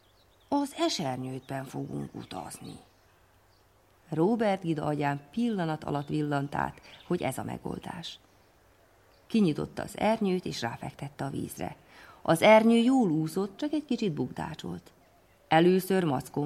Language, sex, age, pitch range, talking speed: Hungarian, female, 30-49, 135-175 Hz, 115 wpm